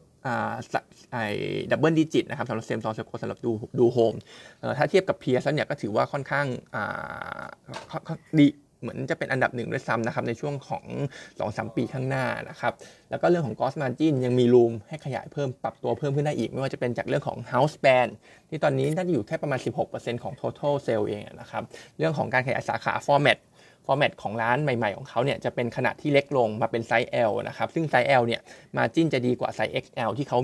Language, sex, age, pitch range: Thai, male, 20-39, 120-145 Hz